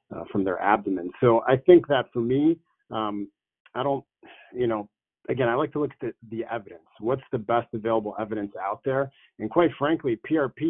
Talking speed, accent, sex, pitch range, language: 195 wpm, American, male, 105-130 Hz, English